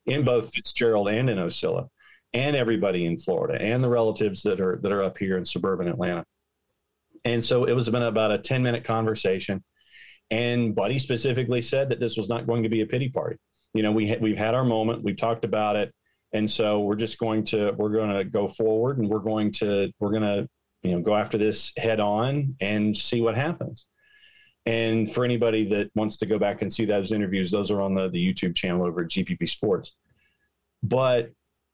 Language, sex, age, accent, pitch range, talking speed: English, male, 40-59, American, 105-120 Hz, 210 wpm